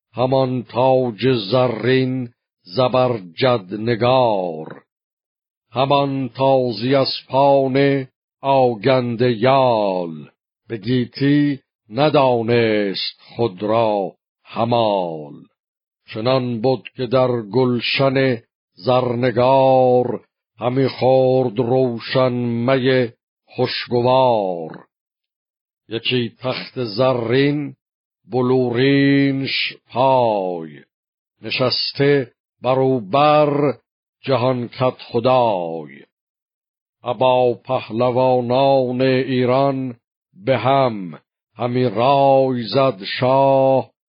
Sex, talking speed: male, 65 wpm